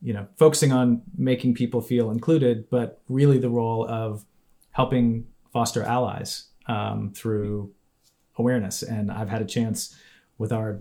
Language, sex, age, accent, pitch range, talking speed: English, male, 30-49, American, 110-125 Hz, 145 wpm